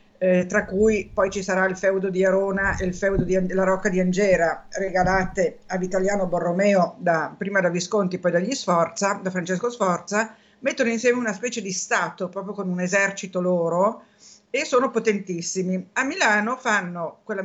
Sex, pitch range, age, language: female, 180-205 Hz, 50-69, Italian